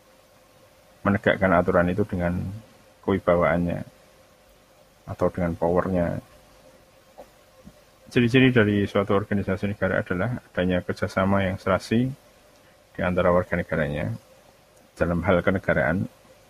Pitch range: 90-105 Hz